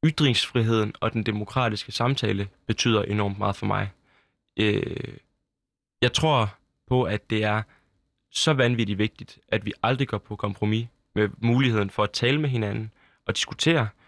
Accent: native